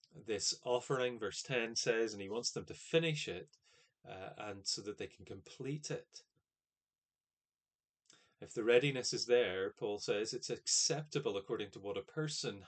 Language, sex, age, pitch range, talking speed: English, male, 30-49, 115-155 Hz, 160 wpm